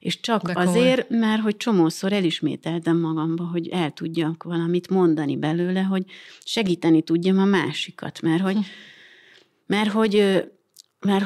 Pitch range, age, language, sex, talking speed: 160-200 Hz, 30-49, Hungarian, female, 130 wpm